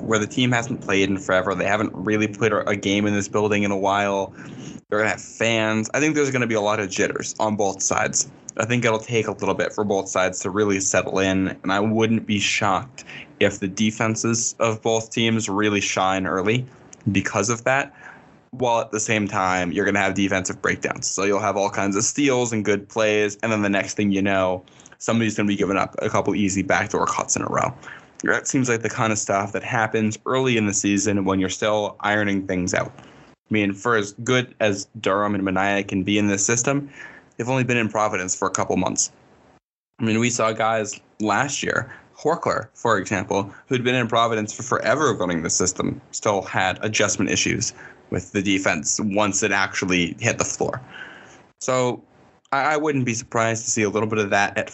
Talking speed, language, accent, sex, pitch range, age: 215 wpm, English, American, male, 100-115 Hz, 10-29